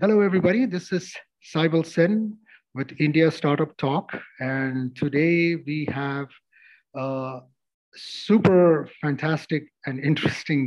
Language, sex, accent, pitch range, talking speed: English, male, Indian, 130-165 Hz, 105 wpm